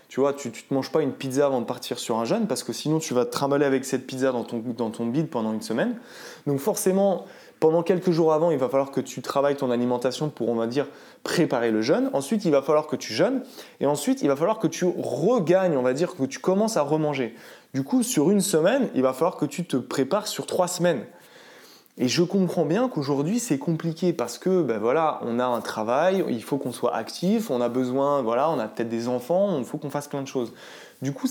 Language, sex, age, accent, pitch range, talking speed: French, male, 20-39, French, 130-175 Hz, 245 wpm